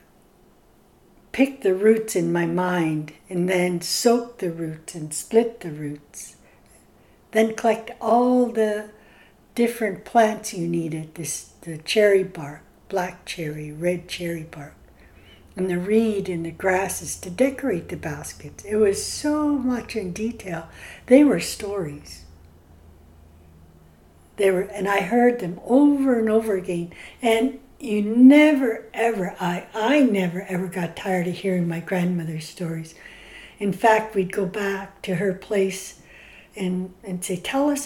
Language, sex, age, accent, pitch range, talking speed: English, female, 60-79, American, 170-230 Hz, 140 wpm